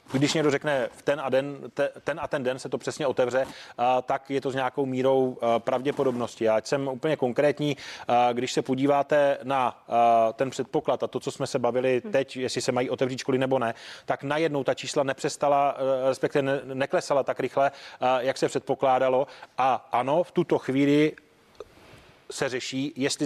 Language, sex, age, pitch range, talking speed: Czech, male, 30-49, 125-140 Hz, 170 wpm